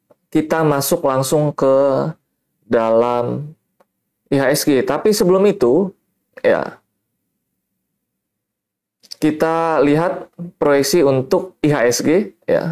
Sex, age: male, 20-39